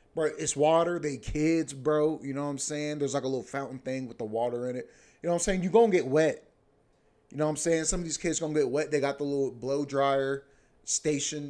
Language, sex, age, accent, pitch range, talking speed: English, male, 20-39, American, 125-150 Hz, 270 wpm